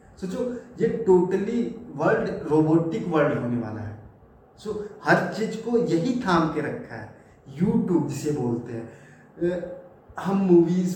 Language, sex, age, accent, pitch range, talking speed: Hindi, male, 20-39, native, 145-190 Hz, 165 wpm